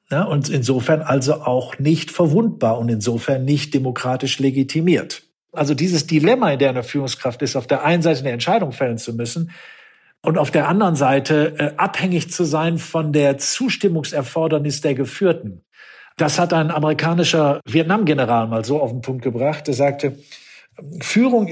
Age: 50-69